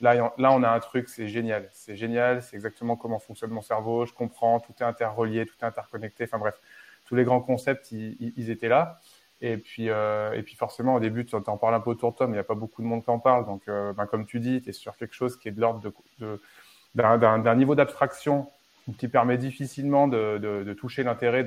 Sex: male